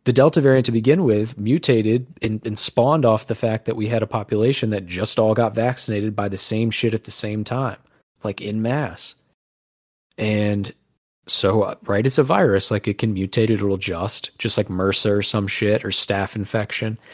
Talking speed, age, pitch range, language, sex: 195 wpm, 20-39, 100-115 Hz, English, male